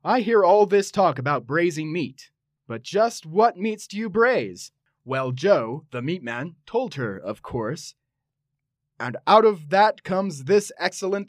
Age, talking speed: 30-49, 165 wpm